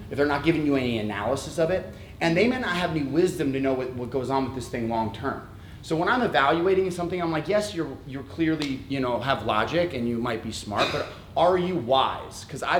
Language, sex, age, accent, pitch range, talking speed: English, male, 30-49, American, 115-145 Hz, 255 wpm